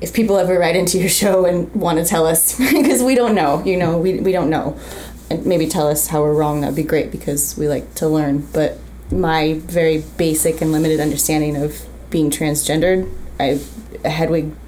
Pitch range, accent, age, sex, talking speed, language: 150-180 Hz, American, 20-39, female, 200 wpm, English